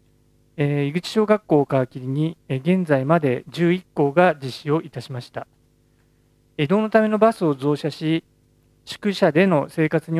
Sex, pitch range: male, 130-175 Hz